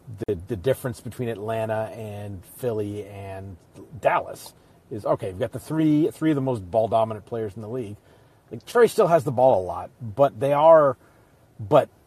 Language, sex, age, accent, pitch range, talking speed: English, male, 40-59, American, 110-130 Hz, 190 wpm